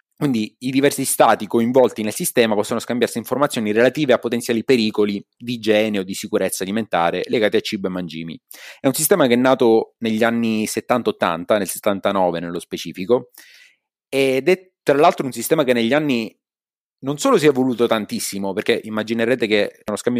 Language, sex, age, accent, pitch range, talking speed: Italian, male, 30-49, native, 100-120 Hz, 170 wpm